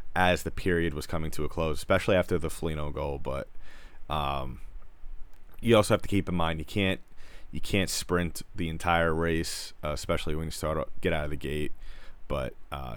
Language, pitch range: English, 80-100 Hz